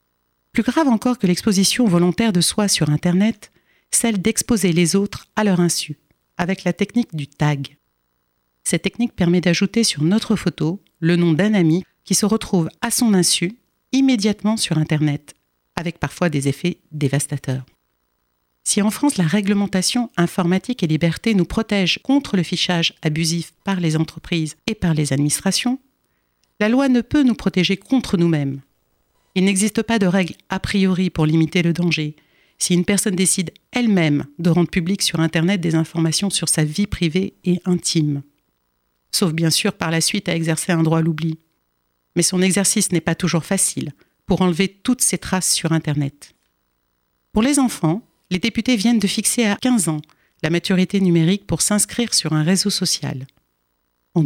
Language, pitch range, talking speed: French, 160-205 Hz, 170 wpm